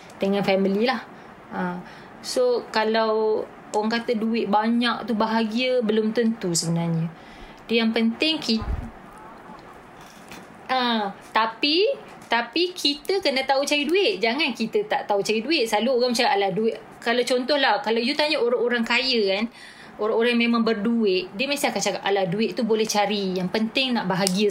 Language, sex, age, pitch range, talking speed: Malay, female, 20-39, 210-275 Hz, 150 wpm